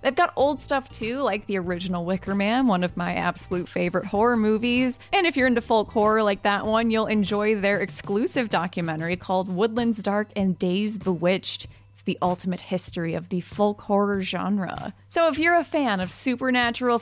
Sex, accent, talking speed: female, American, 185 wpm